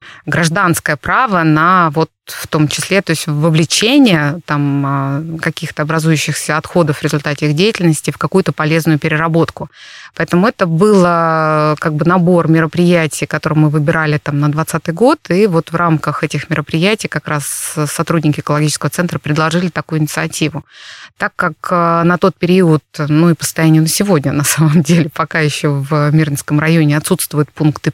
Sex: female